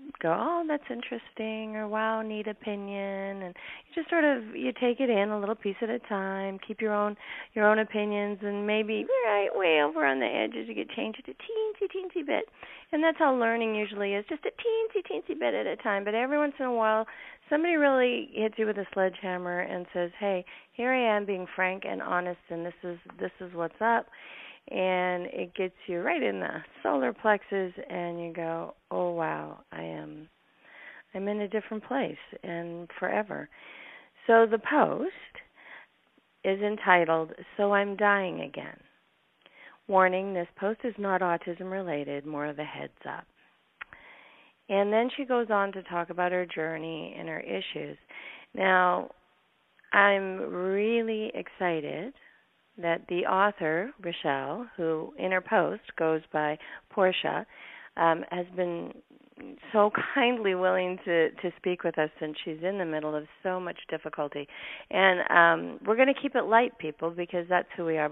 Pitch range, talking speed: 175-225 Hz, 170 wpm